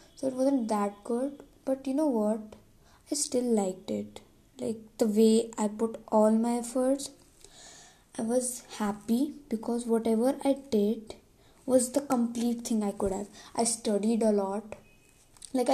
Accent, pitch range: Indian, 210-245 Hz